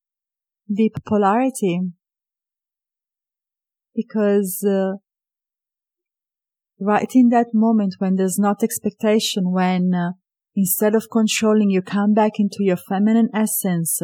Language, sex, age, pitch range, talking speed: English, female, 30-49, 165-210 Hz, 105 wpm